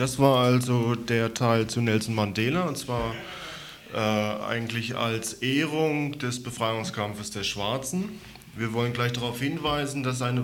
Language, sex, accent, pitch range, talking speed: German, male, German, 115-140 Hz, 145 wpm